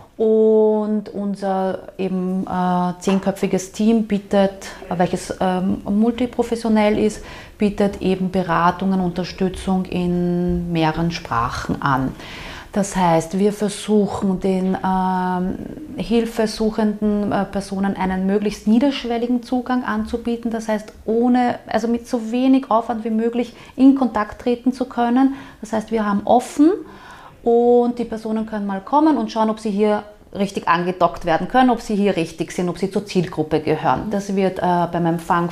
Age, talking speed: 30-49, 140 wpm